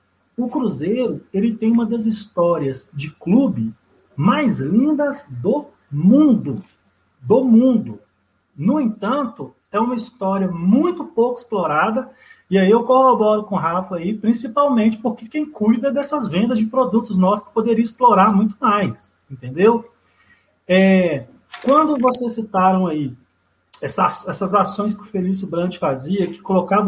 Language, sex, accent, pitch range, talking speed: Portuguese, male, Brazilian, 175-235 Hz, 135 wpm